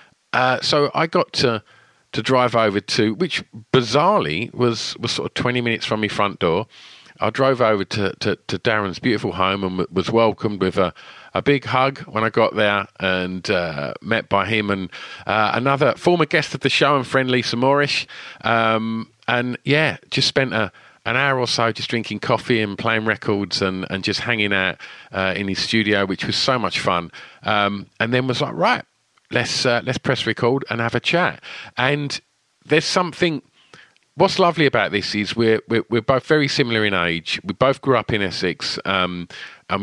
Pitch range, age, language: 100-130 Hz, 50-69, English